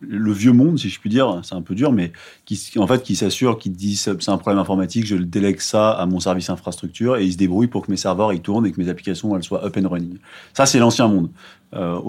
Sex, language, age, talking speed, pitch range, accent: male, French, 30-49, 275 wpm, 95-125 Hz, French